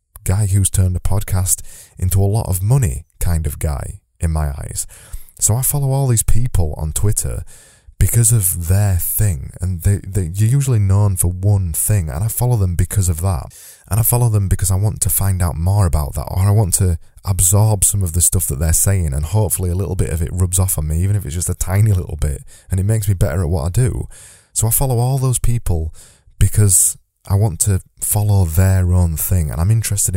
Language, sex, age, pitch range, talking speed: English, male, 20-39, 85-105 Hz, 225 wpm